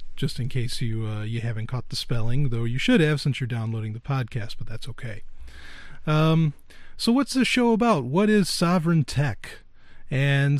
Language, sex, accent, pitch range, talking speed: English, male, American, 125-170 Hz, 185 wpm